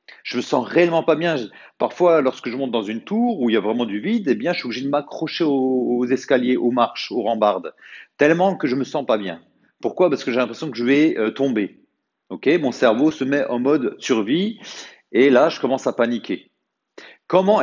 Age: 40-59